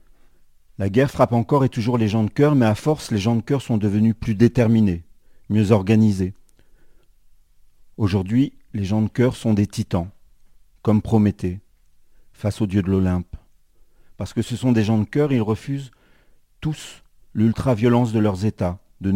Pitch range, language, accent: 100-120 Hz, French, French